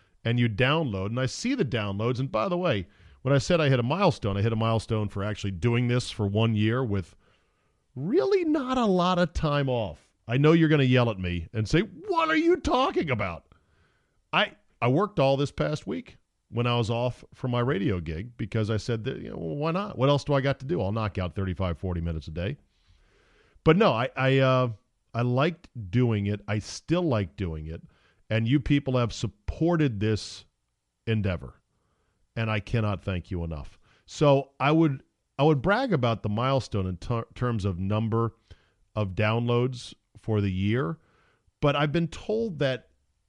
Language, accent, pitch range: English, American, 100-135 Hz